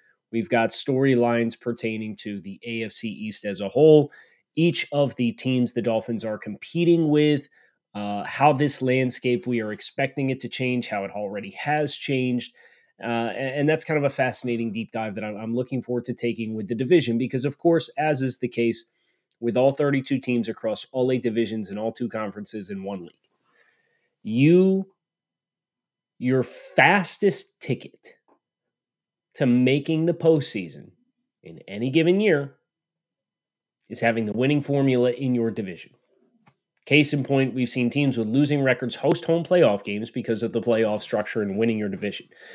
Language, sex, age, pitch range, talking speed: English, male, 30-49, 110-140 Hz, 170 wpm